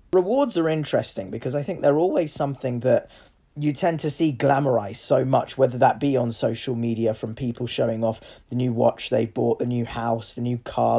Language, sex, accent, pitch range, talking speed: English, male, British, 125-160 Hz, 210 wpm